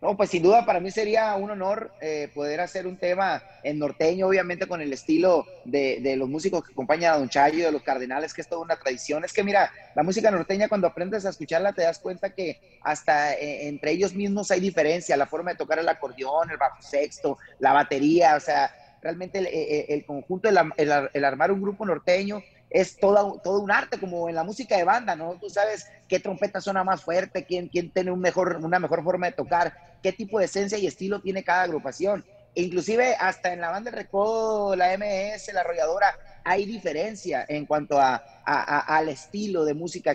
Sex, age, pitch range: male, 30-49, 155-200 Hz